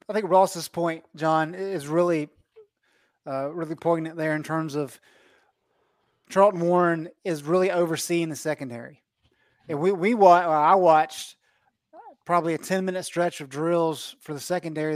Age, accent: 30-49, American